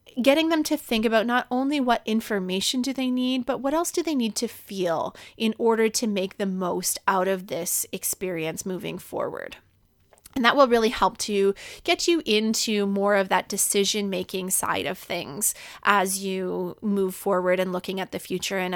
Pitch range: 190-255 Hz